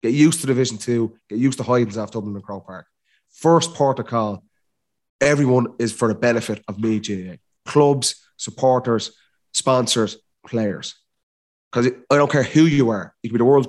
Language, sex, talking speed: English, male, 185 wpm